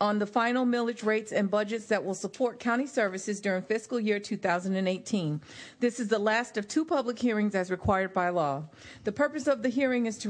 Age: 40-59